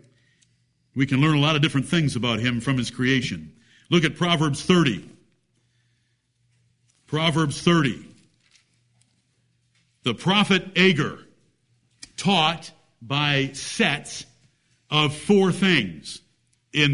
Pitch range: 130-185 Hz